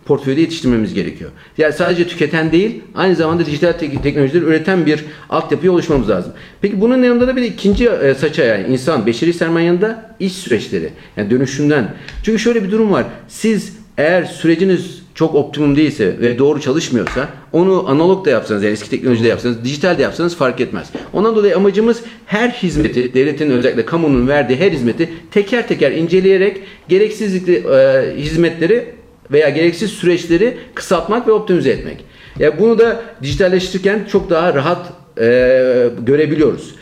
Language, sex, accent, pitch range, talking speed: Turkish, male, native, 140-195 Hz, 150 wpm